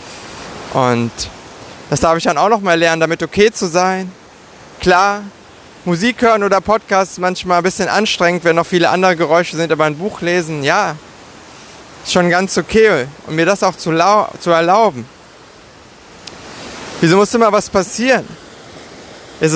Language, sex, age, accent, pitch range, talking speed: German, male, 20-39, German, 170-205 Hz, 155 wpm